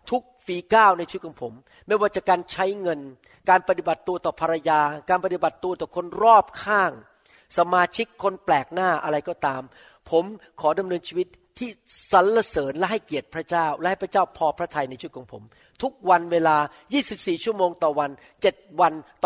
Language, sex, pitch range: Thai, male, 160-210 Hz